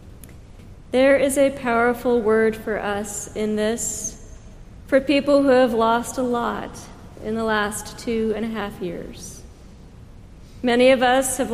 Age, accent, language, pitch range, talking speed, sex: 40-59, American, English, 205-250 Hz, 145 wpm, female